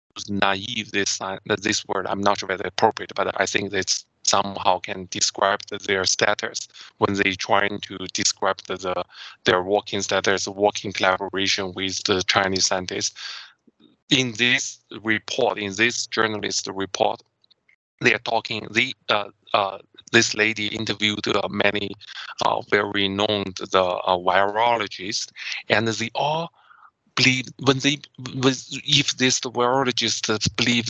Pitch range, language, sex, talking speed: 100-130 Hz, English, male, 145 wpm